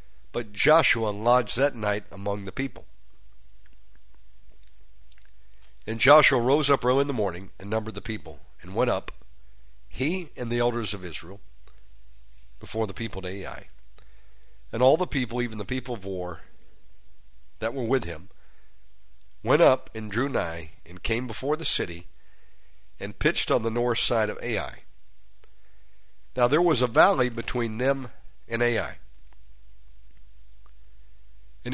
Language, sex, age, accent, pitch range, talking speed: English, male, 60-79, American, 95-130 Hz, 140 wpm